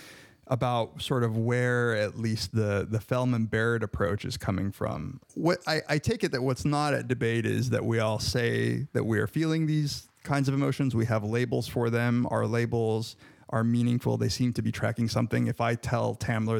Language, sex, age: English, male, 30-49